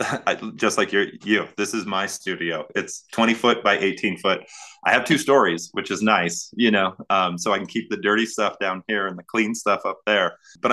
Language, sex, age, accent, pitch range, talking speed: English, male, 20-39, American, 90-110 Hz, 220 wpm